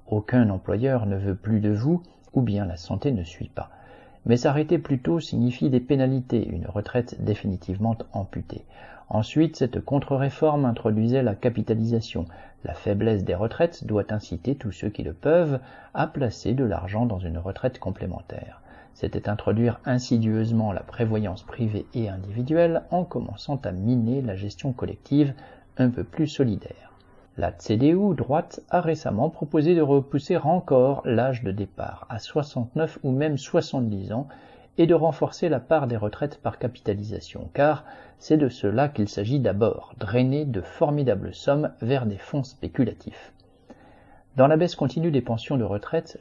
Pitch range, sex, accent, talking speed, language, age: 105-140 Hz, male, French, 155 wpm, French, 50-69